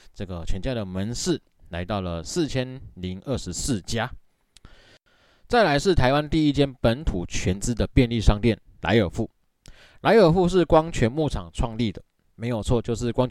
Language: Chinese